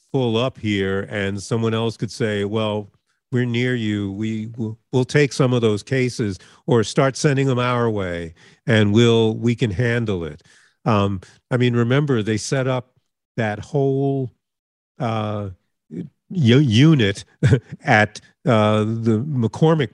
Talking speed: 140 wpm